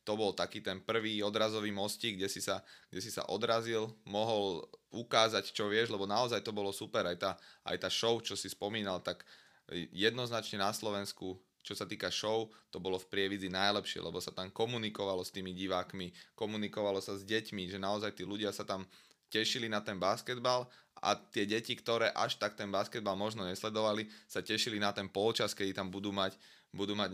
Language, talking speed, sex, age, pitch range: Slovak, 185 wpm, male, 20-39, 100-110 Hz